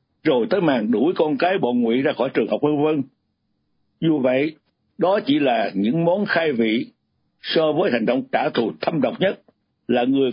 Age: 60-79